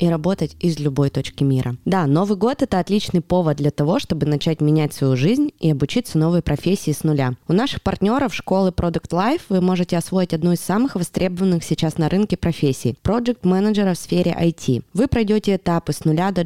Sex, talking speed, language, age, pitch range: female, 200 wpm, Russian, 20-39, 150-190 Hz